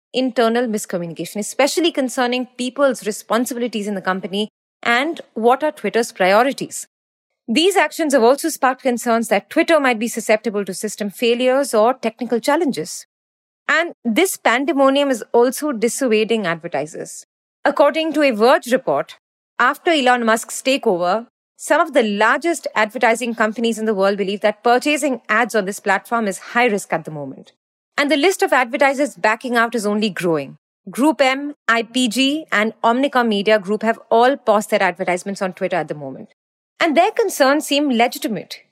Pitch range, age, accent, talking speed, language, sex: 220-290 Hz, 30-49, Indian, 155 wpm, English, female